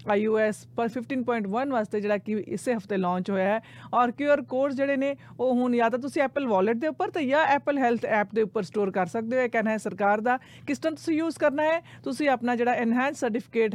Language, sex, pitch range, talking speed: Punjabi, female, 215-270 Hz, 225 wpm